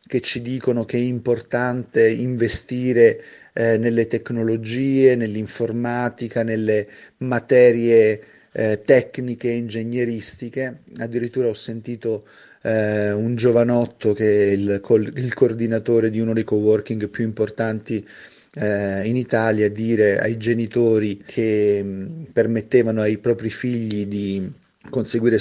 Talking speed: 115 wpm